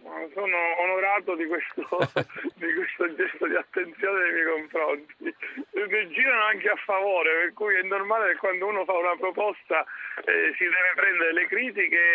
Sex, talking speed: male, 165 wpm